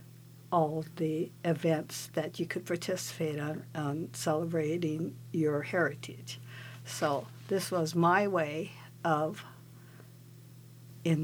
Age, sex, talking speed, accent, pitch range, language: 60-79, female, 100 wpm, American, 125-170 Hz, English